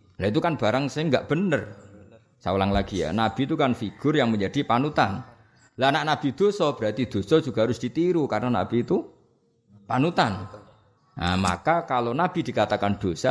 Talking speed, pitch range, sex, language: 165 wpm, 95-135 Hz, male, Indonesian